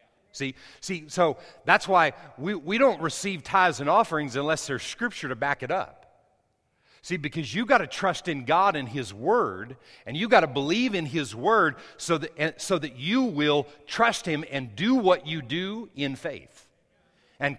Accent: American